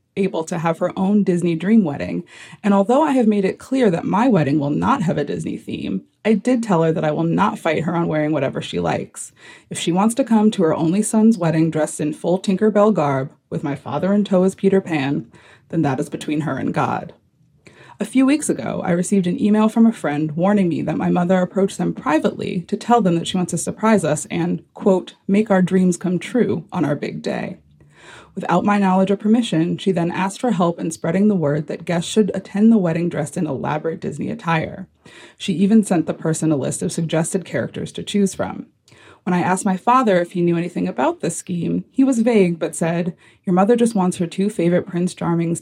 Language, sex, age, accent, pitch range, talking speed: English, female, 30-49, American, 165-200 Hz, 225 wpm